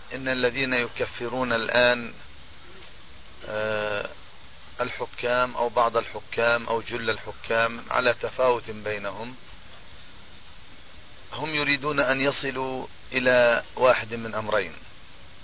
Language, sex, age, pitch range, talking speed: Arabic, male, 40-59, 105-130 Hz, 85 wpm